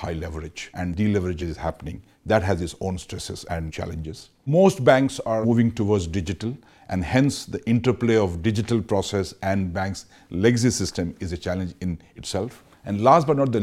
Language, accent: English, Indian